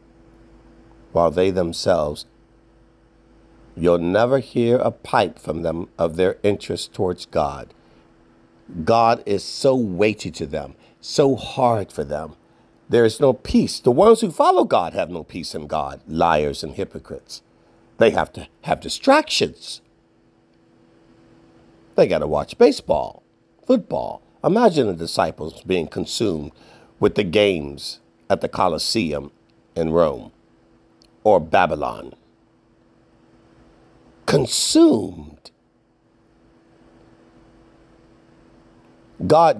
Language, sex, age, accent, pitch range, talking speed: English, male, 50-69, American, 80-100 Hz, 105 wpm